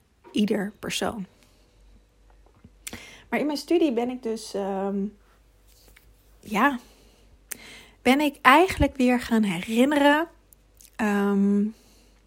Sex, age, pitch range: female, 30-49, 205-240 Hz